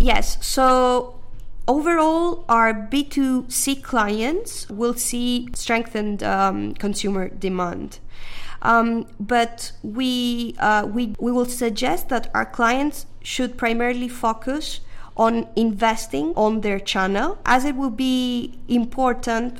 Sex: female